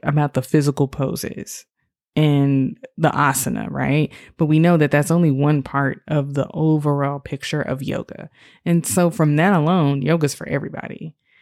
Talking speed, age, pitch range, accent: 165 wpm, 20-39, 140-180 Hz, American